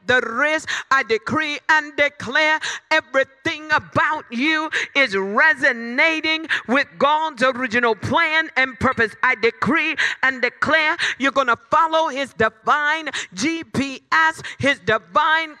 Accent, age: American, 50-69